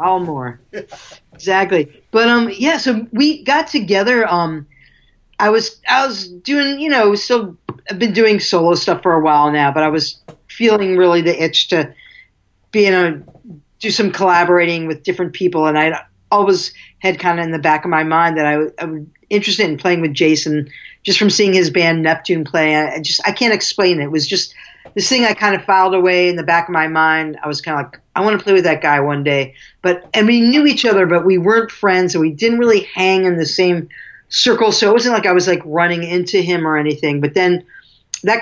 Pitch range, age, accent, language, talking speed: 160-210 Hz, 50-69, American, English, 220 wpm